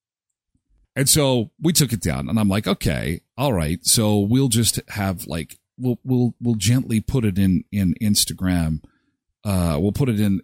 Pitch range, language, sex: 90-140 Hz, English, male